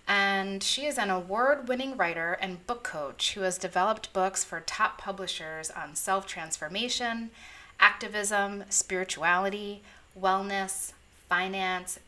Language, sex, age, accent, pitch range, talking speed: English, female, 30-49, American, 170-205 Hz, 115 wpm